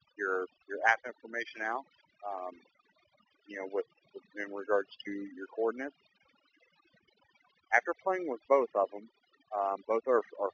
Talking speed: 140 wpm